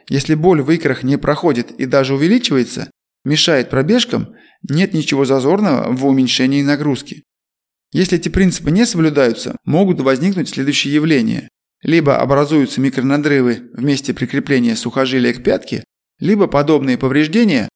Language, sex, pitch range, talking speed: Russian, male, 140-185 Hz, 130 wpm